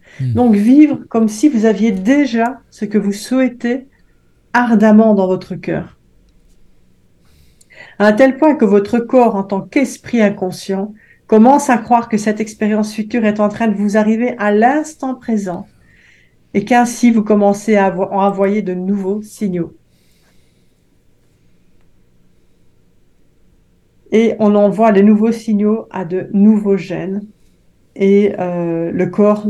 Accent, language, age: French, French, 50-69